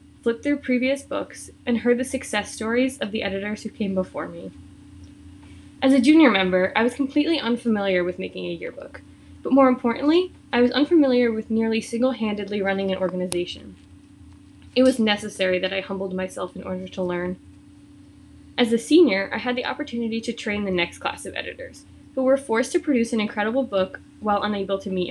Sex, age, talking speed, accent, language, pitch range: female, 10-29, 185 wpm, American, English, 180-260 Hz